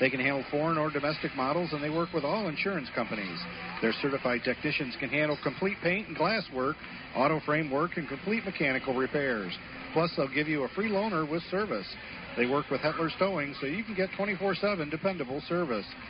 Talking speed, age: 195 wpm, 50-69